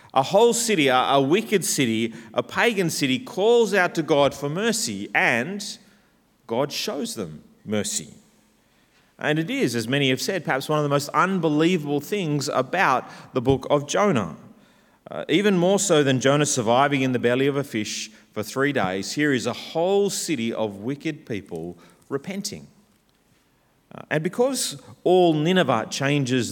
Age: 40-59